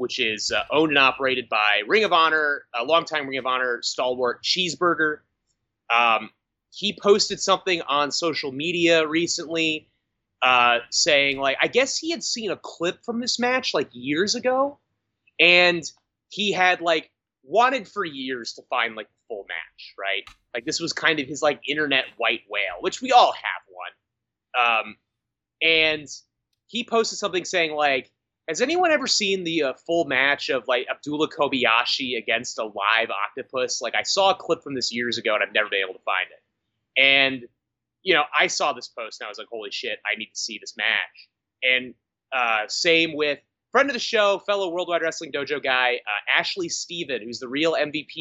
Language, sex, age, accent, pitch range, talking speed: English, male, 30-49, American, 130-185 Hz, 185 wpm